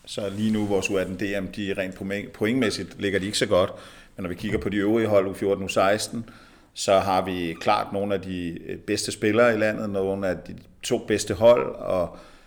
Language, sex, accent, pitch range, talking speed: Danish, male, native, 95-110 Hz, 190 wpm